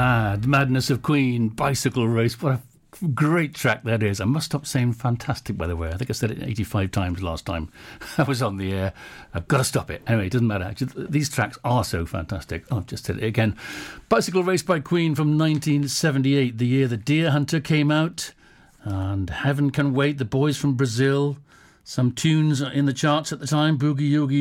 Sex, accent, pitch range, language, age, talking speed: male, British, 105-140 Hz, English, 60-79, 210 wpm